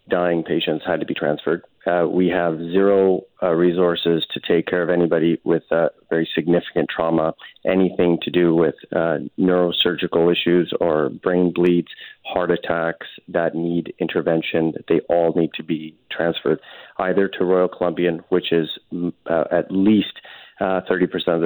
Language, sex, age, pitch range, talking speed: English, male, 30-49, 85-90 Hz, 150 wpm